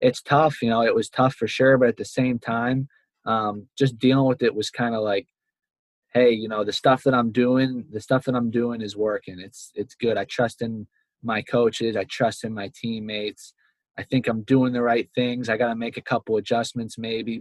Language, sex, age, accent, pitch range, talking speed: English, male, 20-39, American, 100-120 Hz, 225 wpm